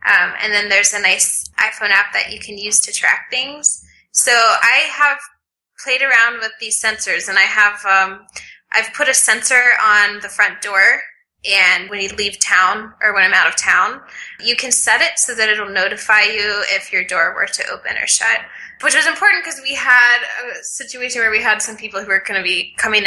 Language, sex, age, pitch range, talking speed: English, female, 10-29, 200-235 Hz, 215 wpm